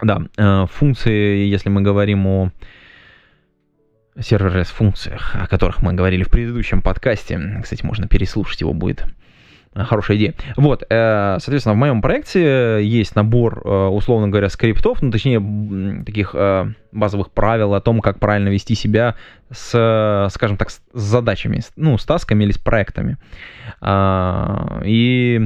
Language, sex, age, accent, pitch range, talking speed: Russian, male, 20-39, native, 100-120 Hz, 130 wpm